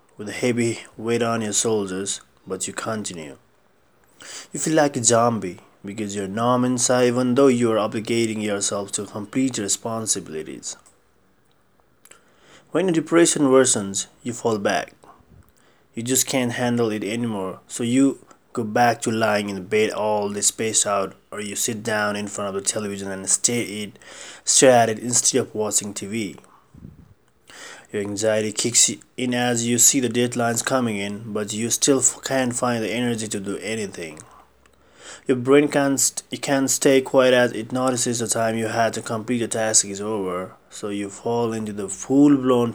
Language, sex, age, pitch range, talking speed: English, male, 30-49, 100-125 Hz, 165 wpm